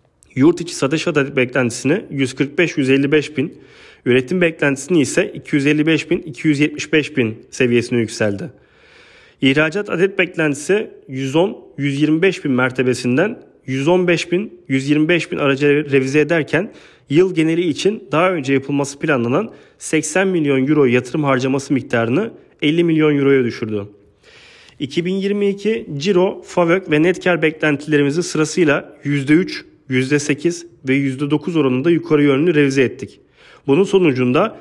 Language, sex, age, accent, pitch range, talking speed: Turkish, male, 40-59, native, 135-170 Hz, 115 wpm